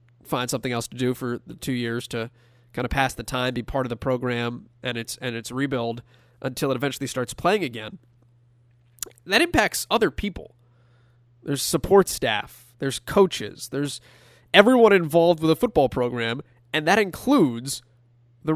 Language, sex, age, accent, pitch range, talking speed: English, male, 20-39, American, 120-150 Hz, 165 wpm